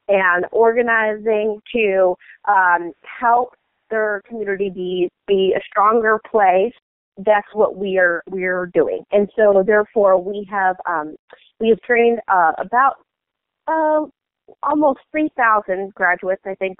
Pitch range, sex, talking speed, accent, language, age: 180-210 Hz, female, 135 wpm, American, English, 30-49